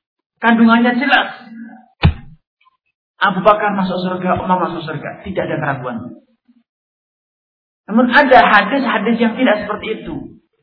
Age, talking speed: 50-69, 105 wpm